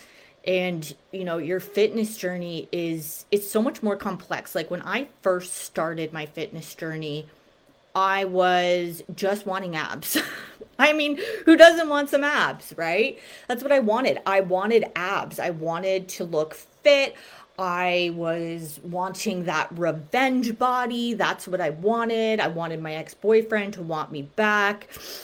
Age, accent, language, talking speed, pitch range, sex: 30-49, American, English, 150 wpm, 165-220 Hz, female